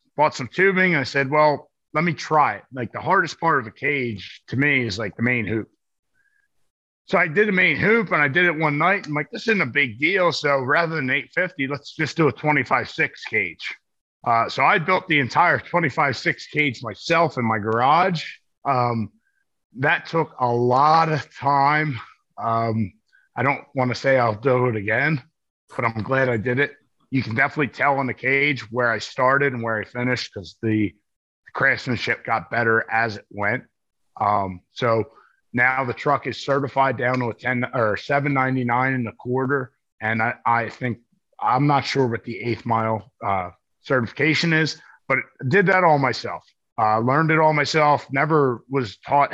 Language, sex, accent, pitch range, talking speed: English, male, American, 115-150 Hz, 190 wpm